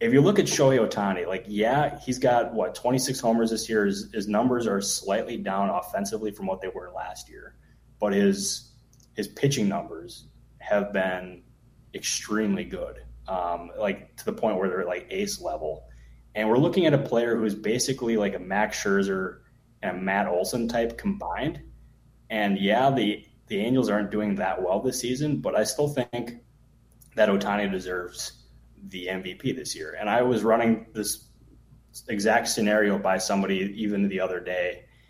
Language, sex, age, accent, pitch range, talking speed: English, male, 20-39, American, 95-125 Hz, 175 wpm